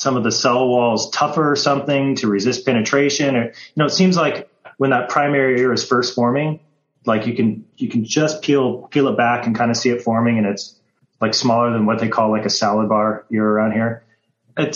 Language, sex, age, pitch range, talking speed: English, male, 30-49, 110-130 Hz, 230 wpm